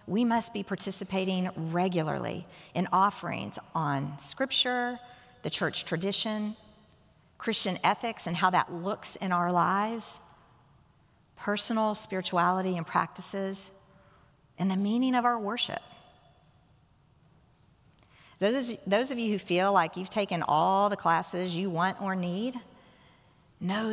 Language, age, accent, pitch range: English, 50-69, American, 170-205 Hz